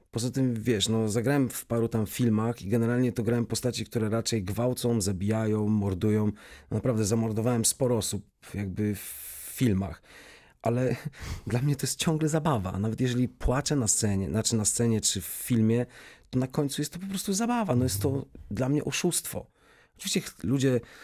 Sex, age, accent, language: male, 40-59, native, Polish